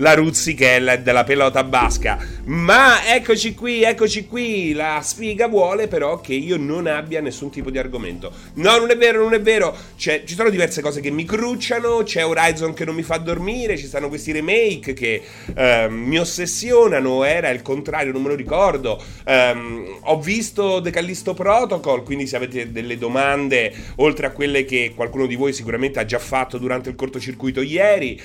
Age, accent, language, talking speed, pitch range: 30-49, native, Italian, 185 wpm, 120-160 Hz